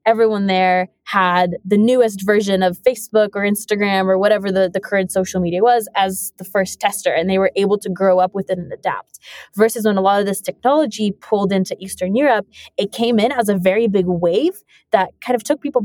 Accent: American